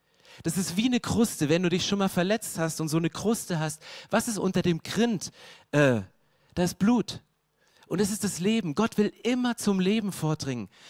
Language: German